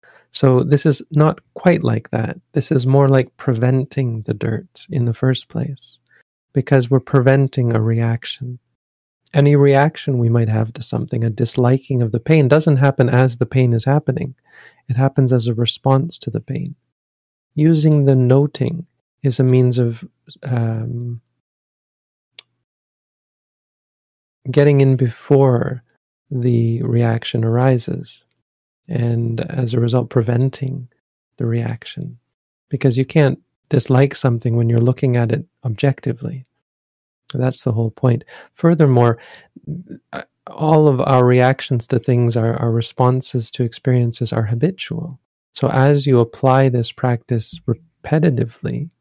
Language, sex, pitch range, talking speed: English, male, 120-140 Hz, 130 wpm